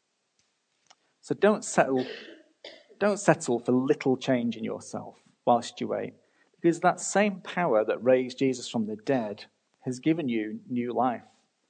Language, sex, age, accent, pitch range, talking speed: English, male, 40-59, British, 120-150 Hz, 145 wpm